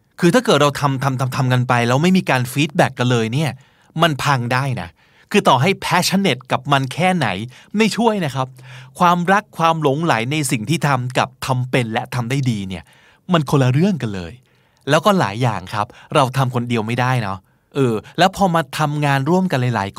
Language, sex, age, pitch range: Thai, male, 20-39, 125-170 Hz